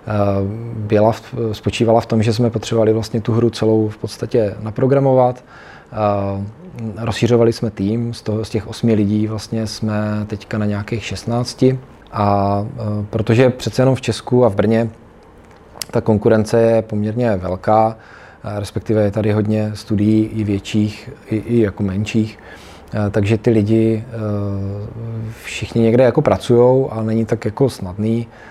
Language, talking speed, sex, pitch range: Czech, 135 wpm, male, 105-115 Hz